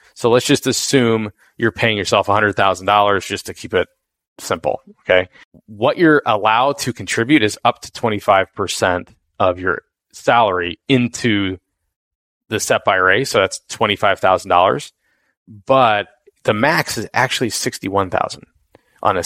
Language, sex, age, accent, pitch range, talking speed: English, male, 30-49, American, 95-120 Hz, 130 wpm